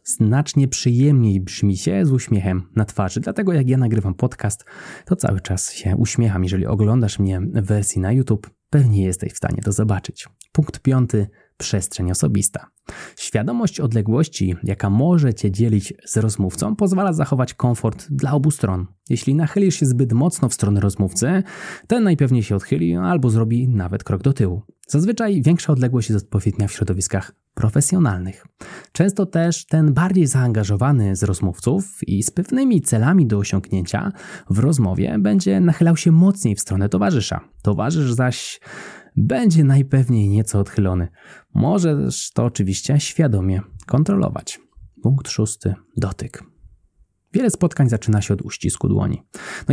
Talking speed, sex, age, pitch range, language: 145 wpm, male, 20-39, 100-145 Hz, Polish